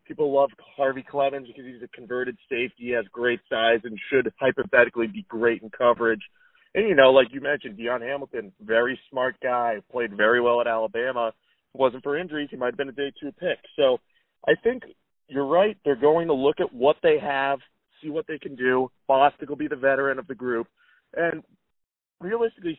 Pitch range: 120-145 Hz